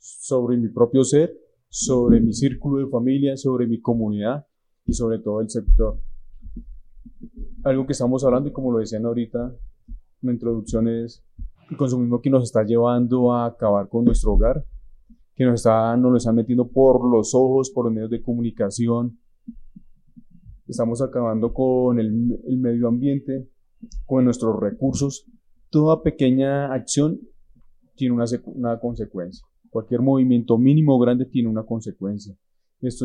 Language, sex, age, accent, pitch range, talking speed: Spanish, male, 30-49, Colombian, 115-130 Hz, 150 wpm